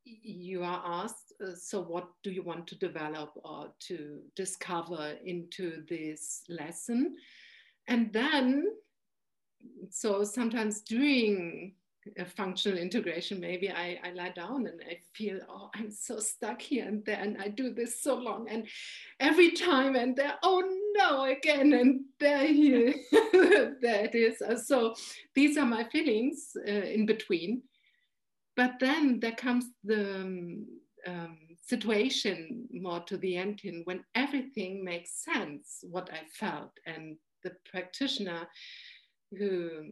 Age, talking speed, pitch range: 60-79, 135 wpm, 180-255 Hz